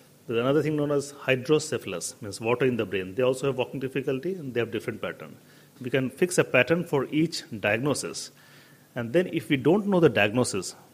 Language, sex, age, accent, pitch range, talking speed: English, male, 40-59, Indian, 125-150 Hz, 195 wpm